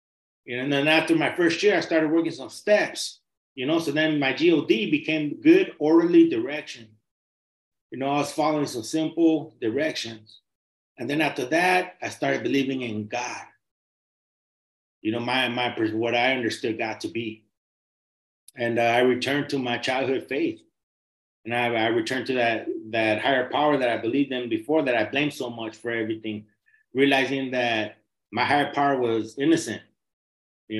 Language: English